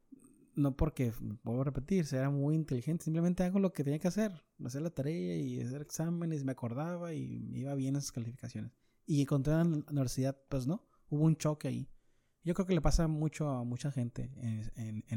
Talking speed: 200 wpm